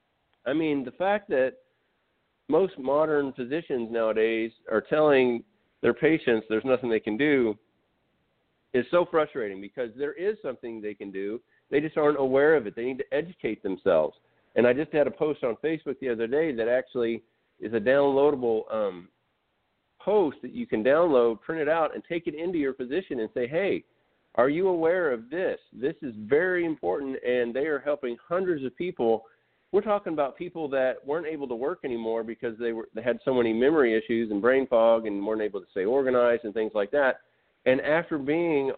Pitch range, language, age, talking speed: 120-165 Hz, English, 50-69, 190 wpm